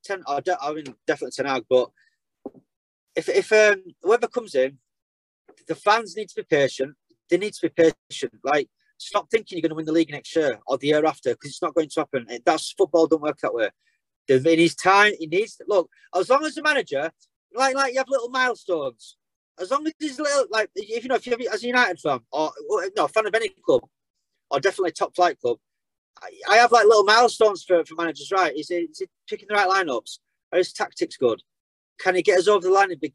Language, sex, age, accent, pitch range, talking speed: English, male, 30-49, British, 175-285 Hz, 235 wpm